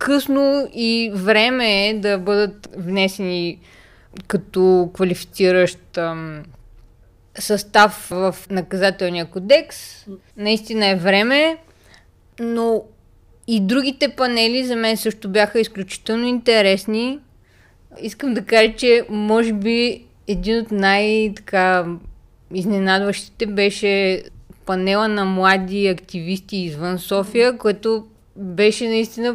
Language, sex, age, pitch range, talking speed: Bulgarian, female, 20-39, 195-245 Hz, 90 wpm